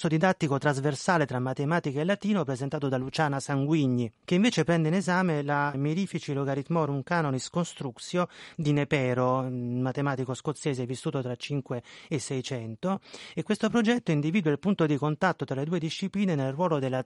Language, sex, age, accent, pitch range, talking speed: Italian, male, 30-49, native, 130-185 Hz, 160 wpm